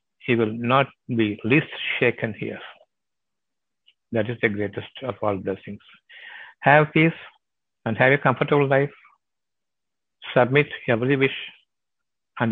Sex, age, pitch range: male, 60-79, 115-140 Hz